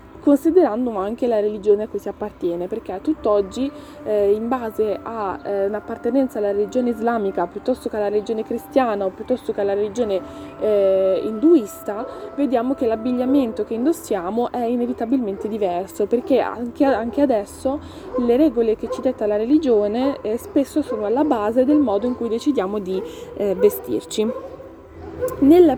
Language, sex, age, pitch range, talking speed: Italian, female, 20-39, 215-285 Hz, 150 wpm